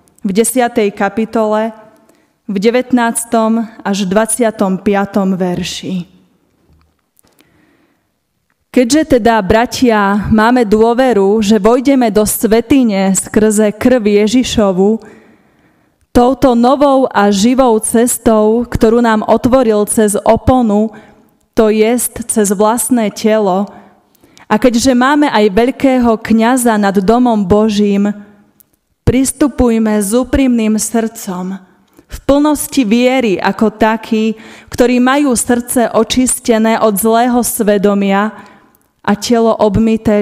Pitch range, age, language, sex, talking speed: 205-240 Hz, 20-39, Slovak, female, 95 wpm